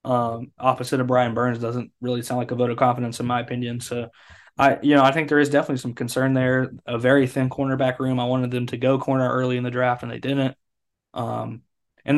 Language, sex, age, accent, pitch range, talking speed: English, male, 20-39, American, 120-135 Hz, 235 wpm